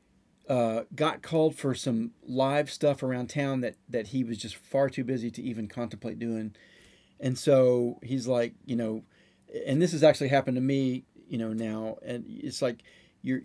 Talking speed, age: 185 wpm, 40-59